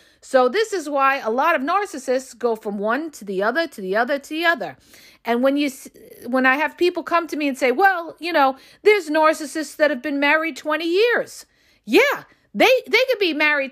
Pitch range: 250-315 Hz